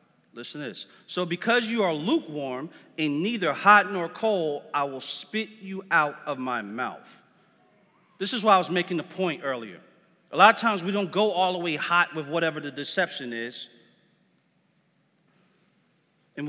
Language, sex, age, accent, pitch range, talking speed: English, male, 40-59, American, 160-200 Hz, 170 wpm